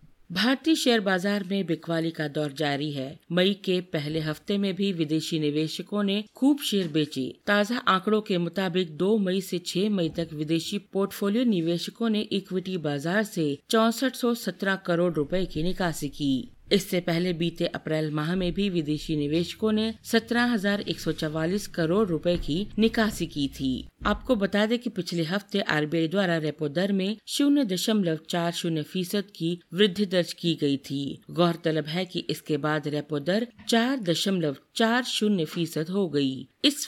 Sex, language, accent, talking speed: female, Hindi, native, 155 wpm